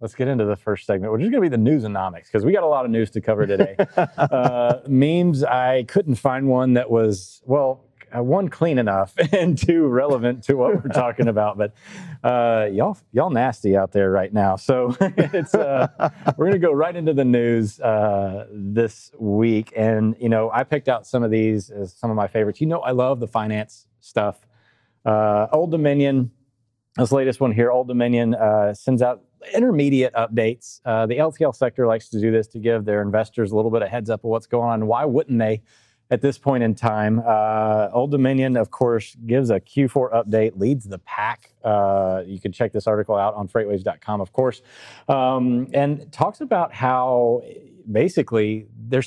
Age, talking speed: 30-49, 200 wpm